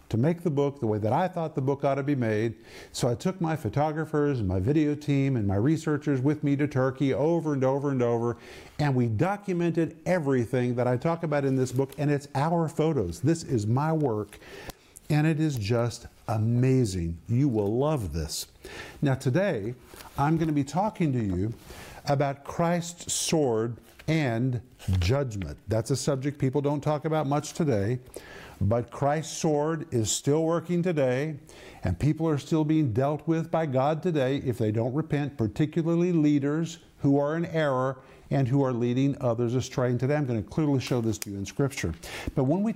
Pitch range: 120-155 Hz